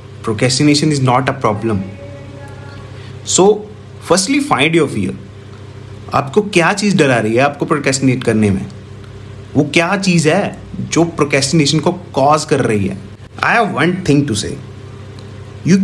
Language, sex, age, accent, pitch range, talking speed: Hindi, male, 30-49, native, 105-170 Hz, 145 wpm